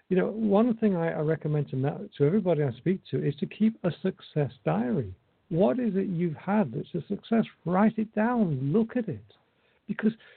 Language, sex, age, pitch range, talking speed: English, male, 60-79, 140-195 Hz, 205 wpm